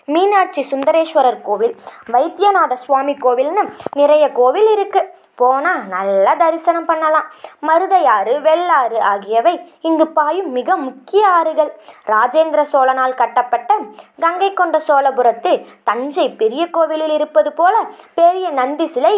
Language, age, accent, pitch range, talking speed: Tamil, 20-39, native, 255-340 Hz, 110 wpm